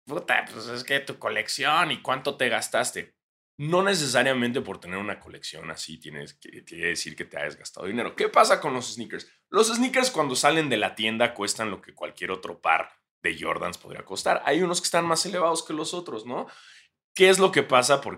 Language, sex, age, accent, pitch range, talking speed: Spanish, male, 20-39, Mexican, 120-175 Hz, 210 wpm